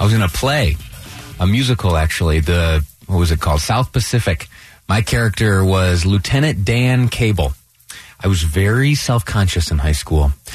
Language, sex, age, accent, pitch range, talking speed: English, male, 30-49, American, 90-135 Hz, 165 wpm